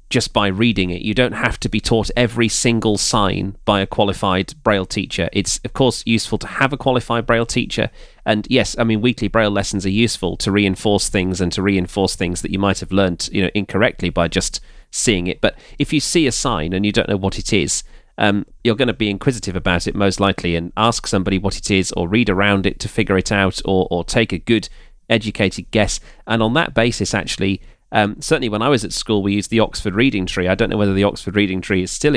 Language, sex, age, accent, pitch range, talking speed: English, male, 30-49, British, 95-120 Hz, 240 wpm